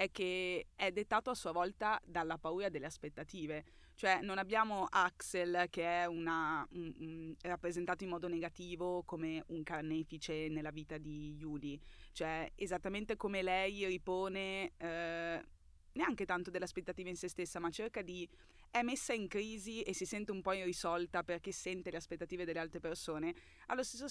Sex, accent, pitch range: female, native, 165-190 Hz